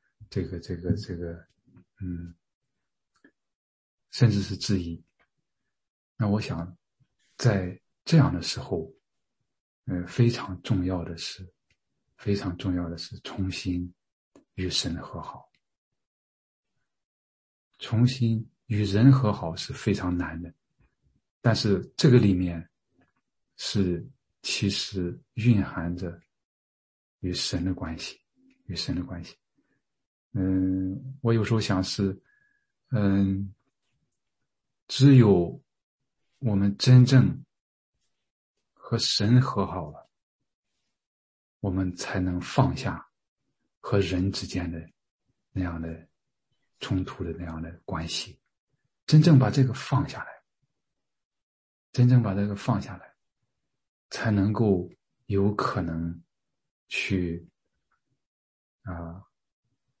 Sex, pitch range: male, 85-115 Hz